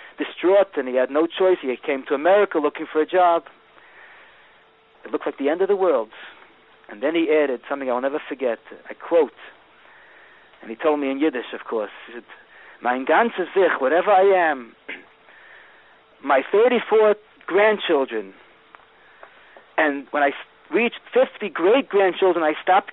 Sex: male